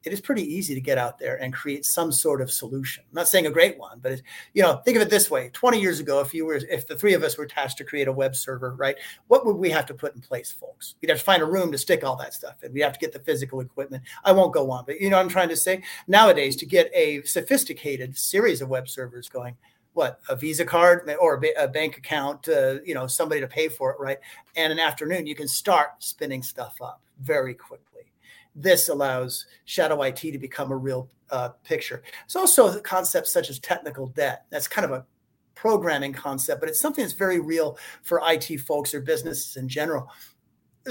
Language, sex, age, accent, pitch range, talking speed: English, male, 40-59, American, 135-185 Hz, 240 wpm